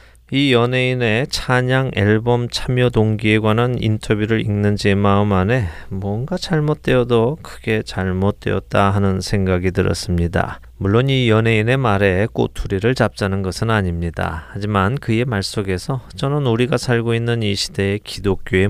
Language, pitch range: Korean, 95-125 Hz